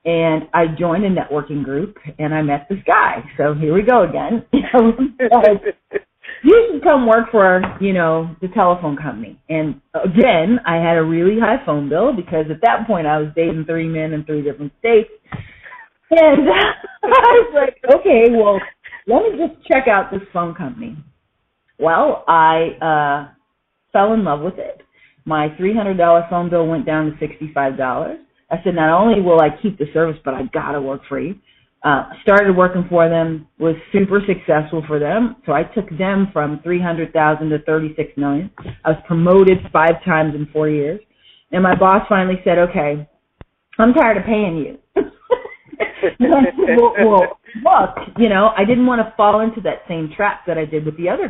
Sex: female